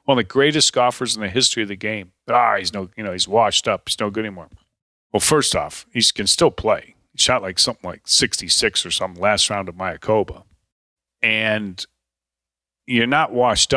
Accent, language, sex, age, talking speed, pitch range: American, English, male, 40-59, 205 wpm, 95-120 Hz